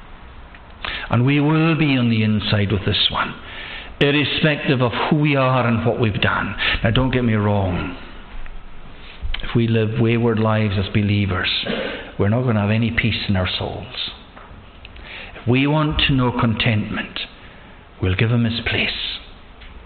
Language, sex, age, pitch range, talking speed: English, male, 60-79, 100-125 Hz, 155 wpm